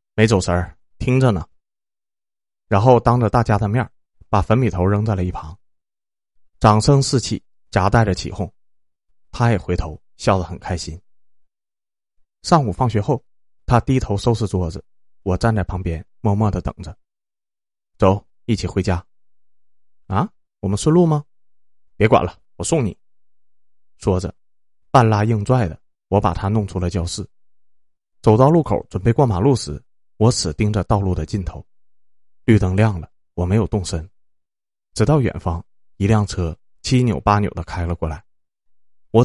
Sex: male